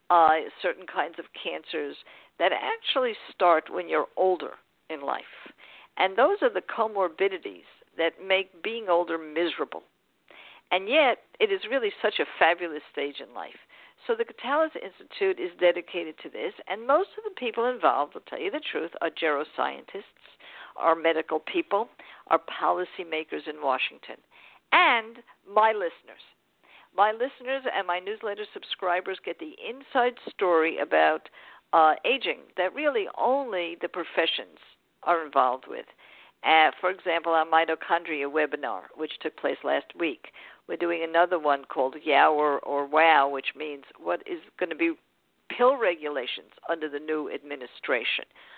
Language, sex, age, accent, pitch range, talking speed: English, female, 50-69, American, 160-250 Hz, 145 wpm